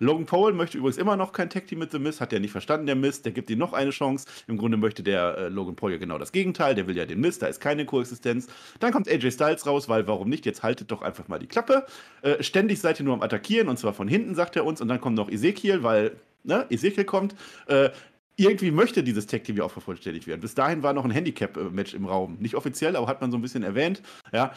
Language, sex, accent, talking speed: German, male, German, 270 wpm